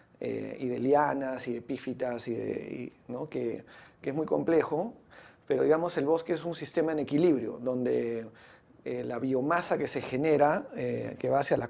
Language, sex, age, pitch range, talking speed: Spanish, male, 40-59, 125-145 Hz, 190 wpm